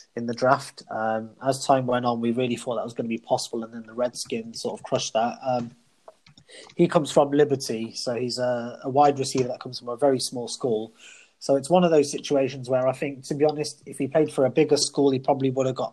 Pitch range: 120-140 Hz